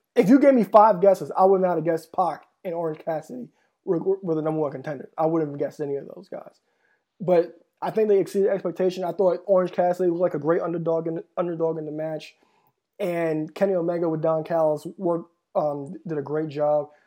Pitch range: 165-195 Hz